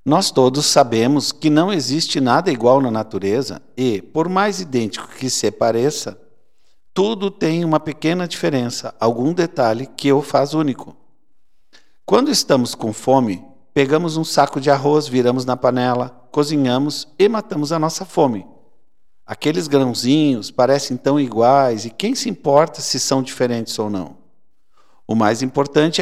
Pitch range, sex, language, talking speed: 125-160 Hz, male, Portuguese, 145 wpm